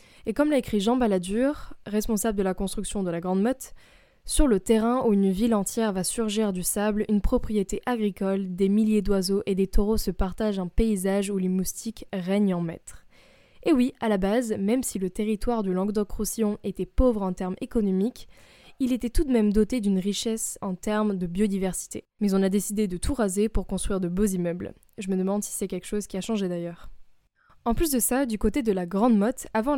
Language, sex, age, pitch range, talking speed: French, female, 20-39, 195-235 Hz, 215 wpm